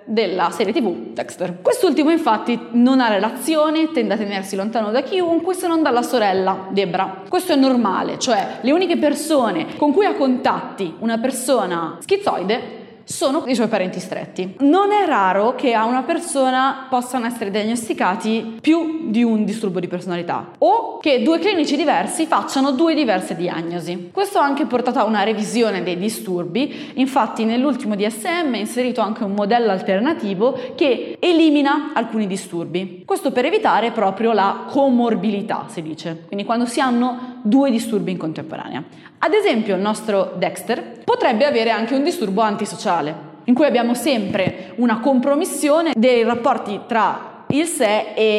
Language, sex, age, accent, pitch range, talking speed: Italian, female, 20-39, native, 200-280 Hz, 155 wpm